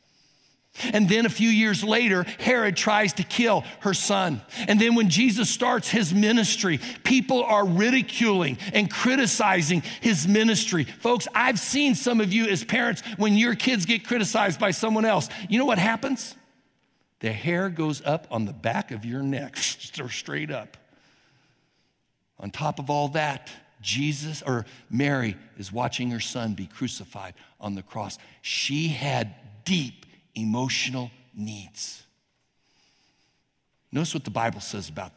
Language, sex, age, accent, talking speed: English, male, 60-79, American, 150 wpm